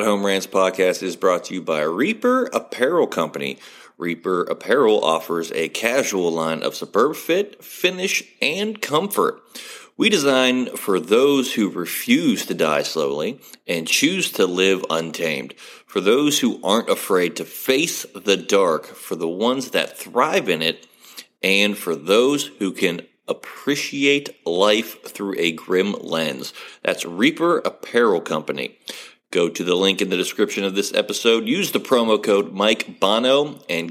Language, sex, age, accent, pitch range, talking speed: English, male, 30-49, American, 95-130 Hz, 150 wpm